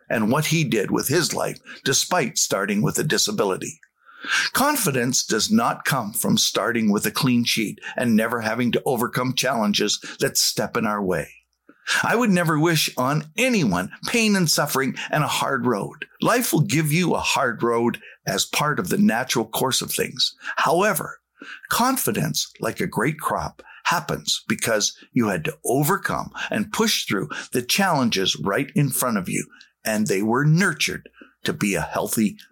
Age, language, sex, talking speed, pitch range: 50-69, English, male, 170 wpm, 130-215 Hz